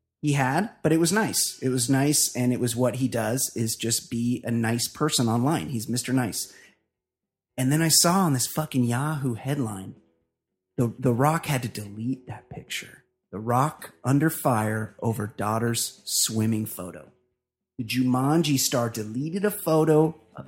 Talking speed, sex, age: 165 wpm, male, 30-49